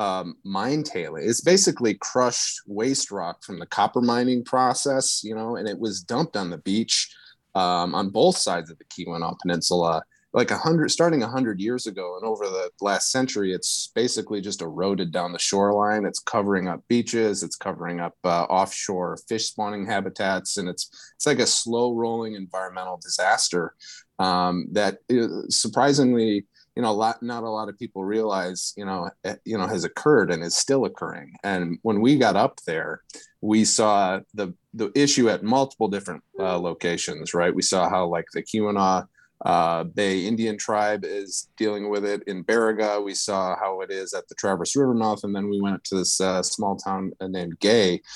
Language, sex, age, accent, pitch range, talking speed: English, male, 30-49, American, 95-115 Hz, 185 wpm